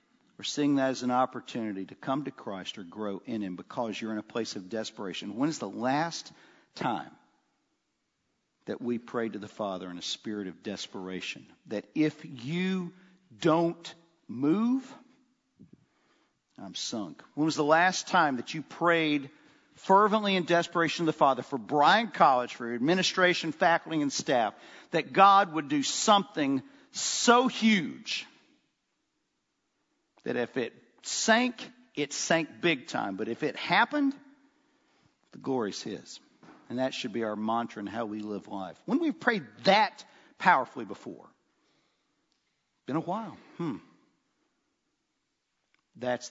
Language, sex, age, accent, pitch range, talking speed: English, male, 50-69, American, 115-195 Hz, 145 wpm